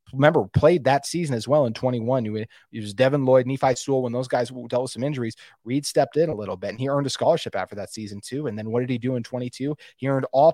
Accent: American